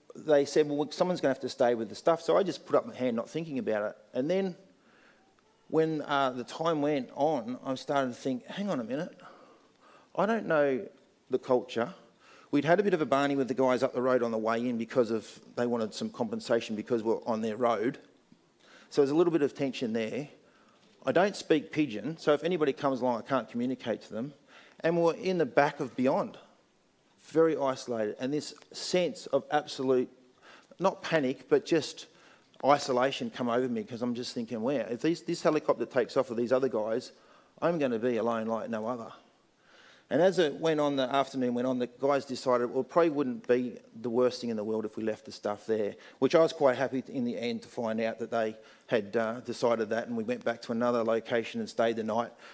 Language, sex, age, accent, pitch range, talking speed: English, male, 40-59, Australian, 120-155 Hz, 225 wpm